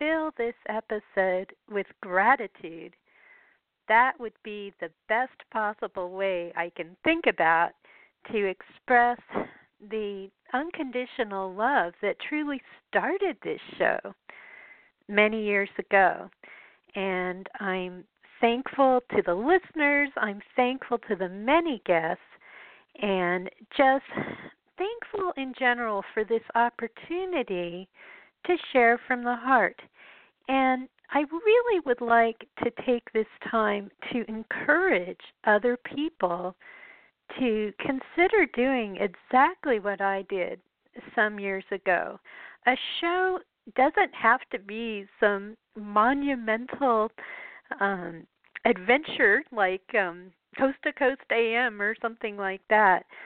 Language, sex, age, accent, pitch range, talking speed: English, female, 50-69, American, 200-275 Hz, 110 wpm